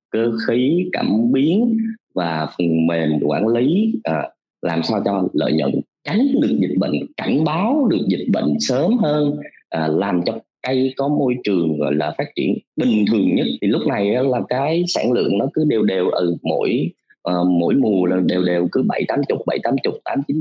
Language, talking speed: Vietnamese, 200 wpm